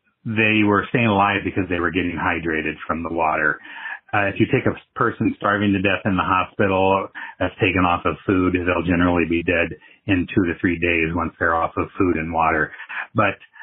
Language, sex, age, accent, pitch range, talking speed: English, male, 40-59, American, 85-100 Hz, 205 wpm